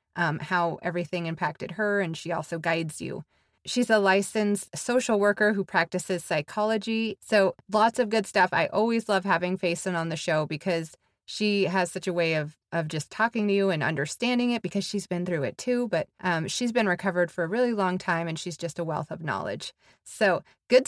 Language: English